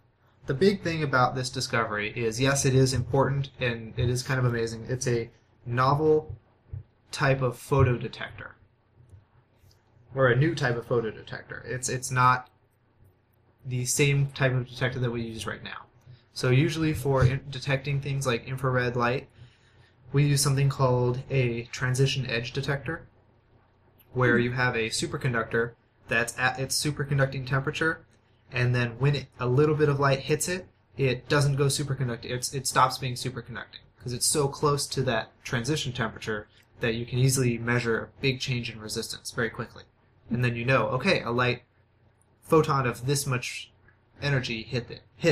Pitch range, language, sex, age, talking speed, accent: 115-135 Hz, English, male, 20-39, 160 wpm, American